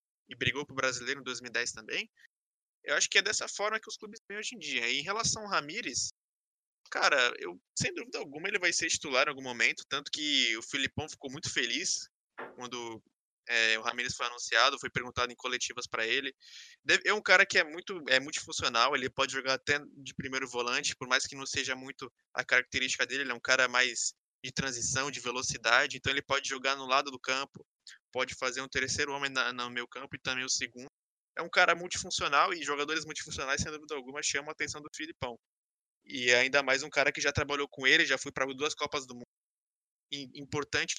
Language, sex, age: Portuguese, male, 20-39